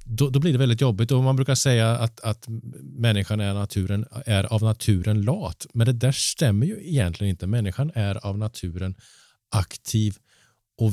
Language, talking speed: Swedish, 170 wpm